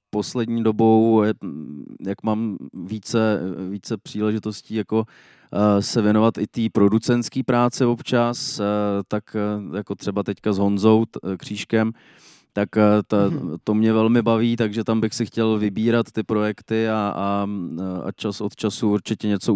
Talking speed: 140 wpm